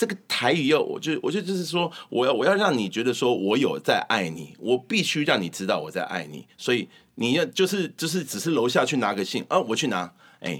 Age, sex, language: 30-49, male, Chinese